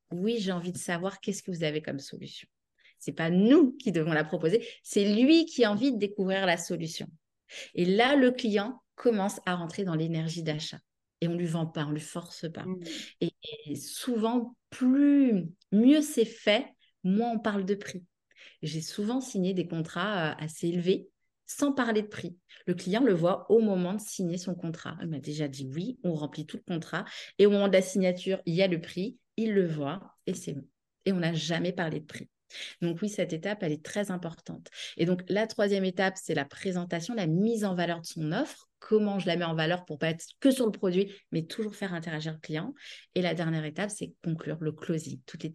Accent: French